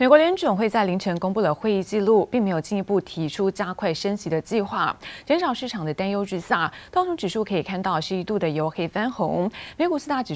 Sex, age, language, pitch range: female, 20-39, Chinese, 170-215 Hz